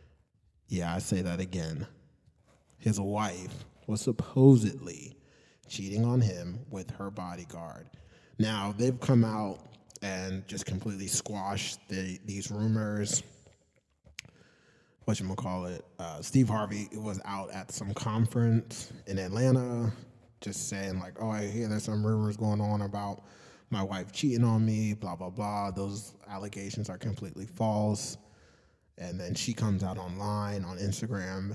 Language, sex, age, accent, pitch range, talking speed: English, male, 20-39, American, 95-110 Hz, 130 wpm